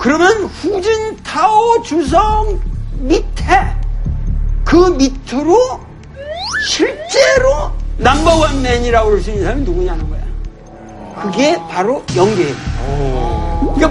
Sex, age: male, 50-69